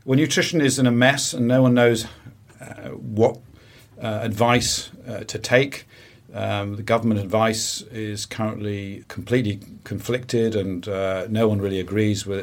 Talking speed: 155 wpm